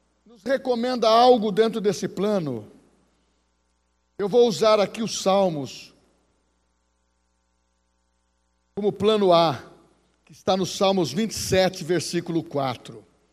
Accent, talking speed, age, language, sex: Brazilian, 95 wpm, 60-79, Portuguese, male